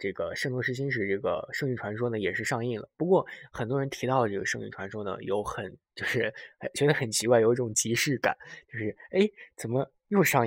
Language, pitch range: Chinese, 105-130 Hz